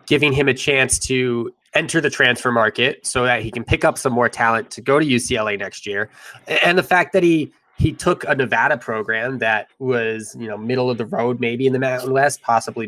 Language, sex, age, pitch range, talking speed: English, male, 20-39, 115-145 Hz, 225 wpm